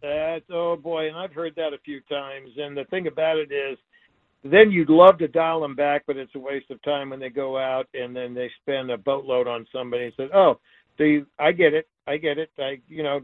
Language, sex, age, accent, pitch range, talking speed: English, male, 60-79, American, 145-170 Hz, 250 wpm